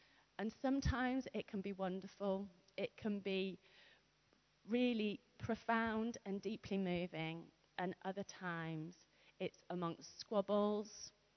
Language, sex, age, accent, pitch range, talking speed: English, female, 30-49, British, 190-230 Hz, 105 wpm